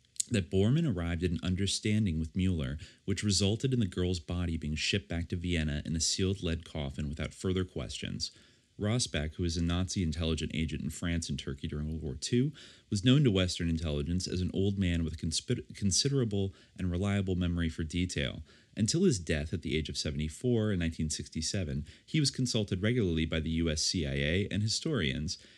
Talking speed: 190 wpm